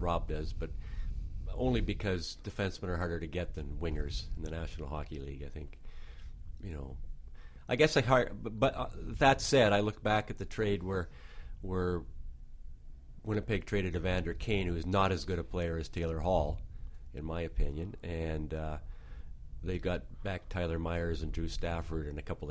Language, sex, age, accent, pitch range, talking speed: English, male, 40-59, American, 75-95 Hz, 180 wpm